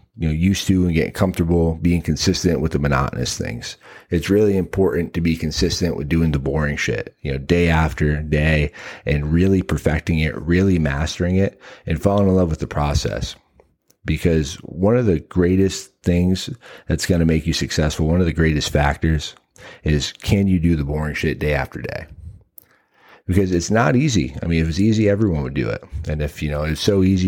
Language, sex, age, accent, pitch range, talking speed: English, male, 30-49, American, 75-95 Hz, 200 wpm